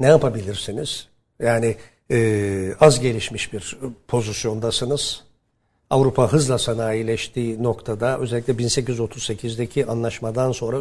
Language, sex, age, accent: Turkish, male, 60-79, native